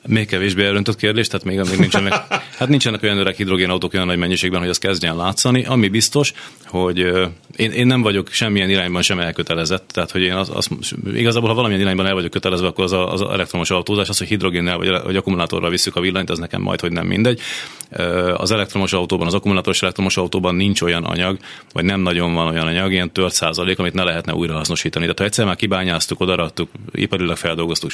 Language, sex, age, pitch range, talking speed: Hungarian, male, 30-49, 85-100 Hz, 205 wpm